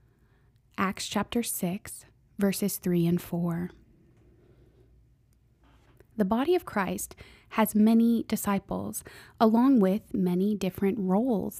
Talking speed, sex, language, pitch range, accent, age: 100 wpm, female, English, 175-215 Hz, American, 20-39